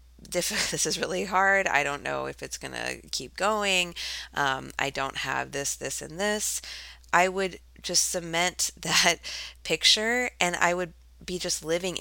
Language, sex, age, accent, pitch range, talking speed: English, female, 20-39, American, 135-175 Hz, 165 wpm